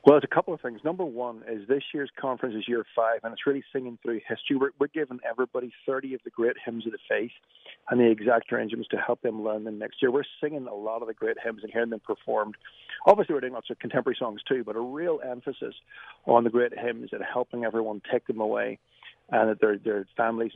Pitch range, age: 115-140 Hz, 50-69